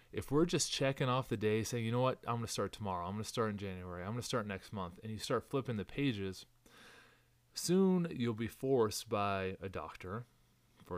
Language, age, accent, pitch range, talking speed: English, 30-49, American, 100-125 Hz, 230 wpm